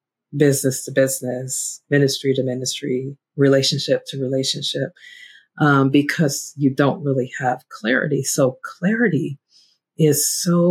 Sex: female